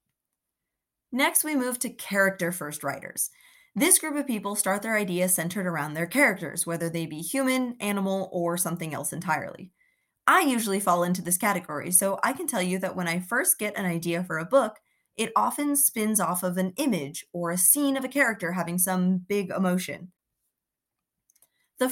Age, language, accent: 20-39, English, American